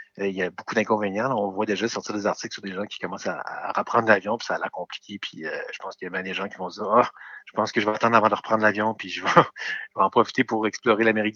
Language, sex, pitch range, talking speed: French, male, 100-115 Hz, 310 wpm